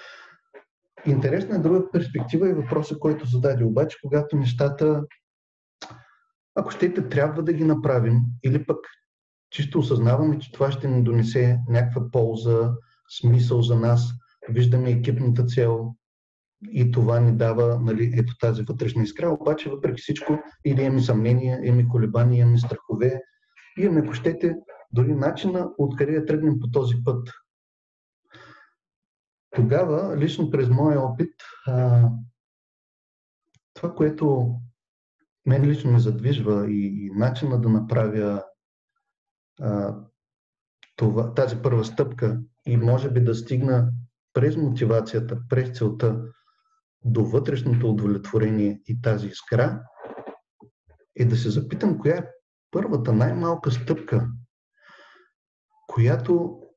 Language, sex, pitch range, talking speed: Bulgarian, male, 120-150 Hz, 120 wpm